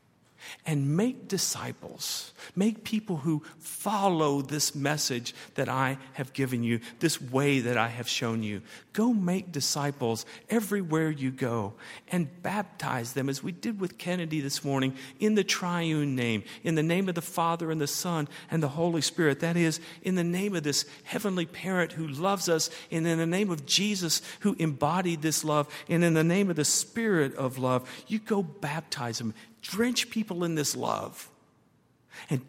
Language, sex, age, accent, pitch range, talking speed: English, male, 50-69, American, 135-185 Hz, 175 wpm